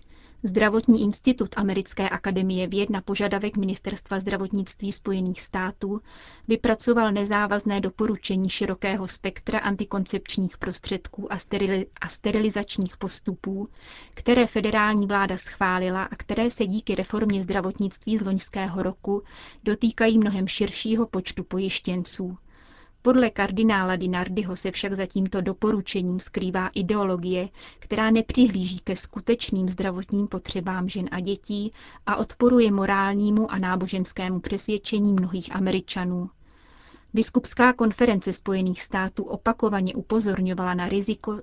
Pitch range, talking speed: 190-215 Hz, 105 wpm